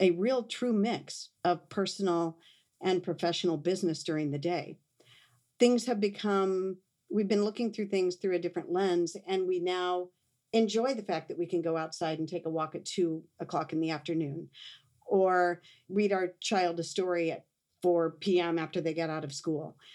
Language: English